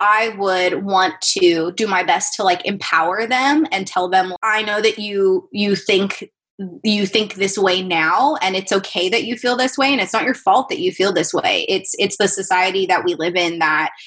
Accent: American